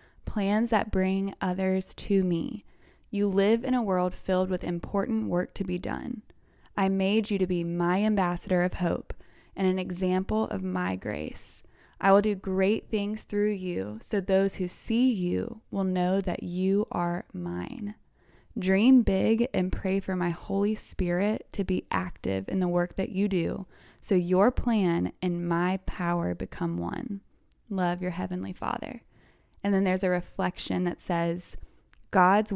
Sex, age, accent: female, 20-39, American